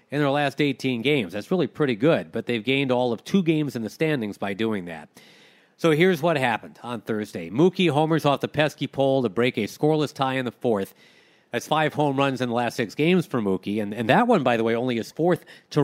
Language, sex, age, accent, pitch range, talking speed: English, male, 40-59, American, 120-155 Hz, 245 wpm